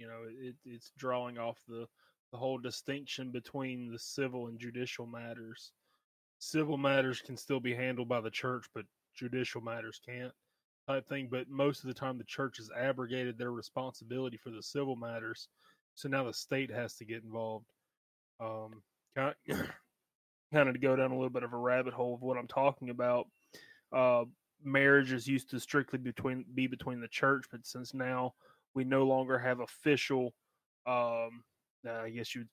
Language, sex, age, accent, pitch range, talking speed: English, male, 20-39, American, 120-130 Hz, 185 wpm